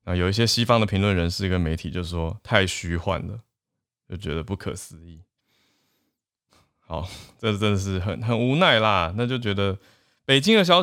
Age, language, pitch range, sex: 20-39, Chinese, 90-120 Hz, male